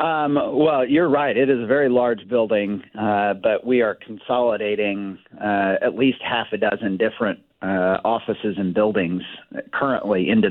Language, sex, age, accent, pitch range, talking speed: English, male, 40-59, American, 95-115 Hz, 160 wpm